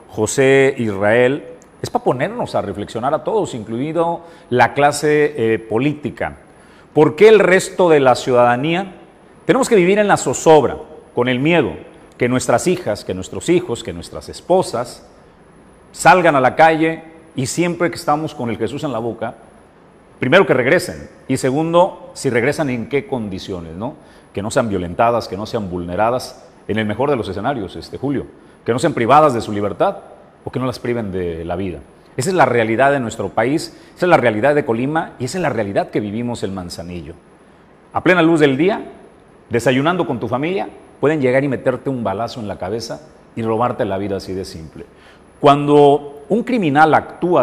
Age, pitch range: 40-59, 115-155 Hz